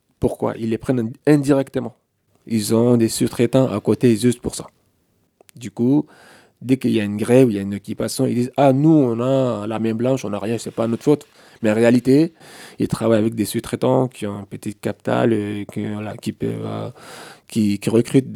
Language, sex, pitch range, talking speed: French, male, 105-120 Hz, 195 wpm